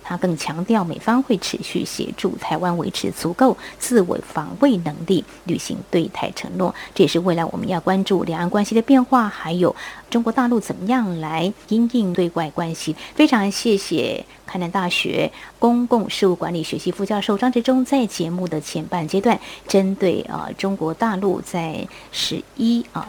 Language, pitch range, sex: Chinese, 170-230 Hz, female